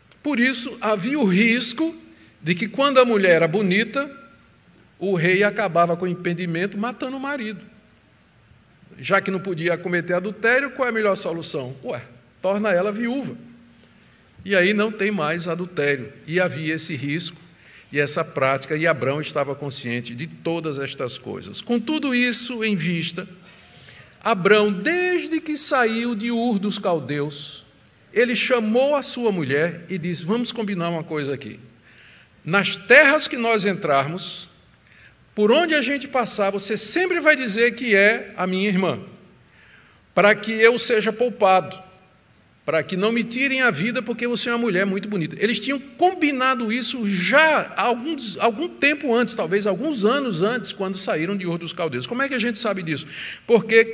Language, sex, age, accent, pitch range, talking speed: Portuguese, male, 50-69, Brazilian, 175-240 Hz, 165 wpm